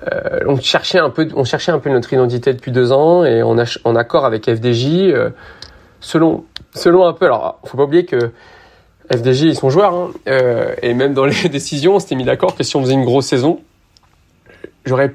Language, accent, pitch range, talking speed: French, French, 125-165 Hz, 220 wpm